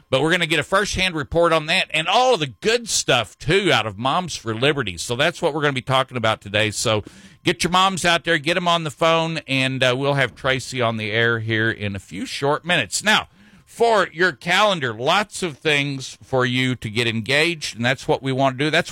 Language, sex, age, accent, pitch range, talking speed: English, male, 50-69, American, 125-165 Hz, 245 wpm